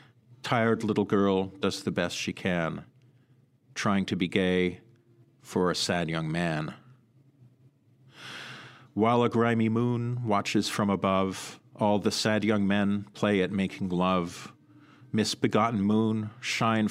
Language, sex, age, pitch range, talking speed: English, male, 40-59, 100-130 Hz, 130 wpm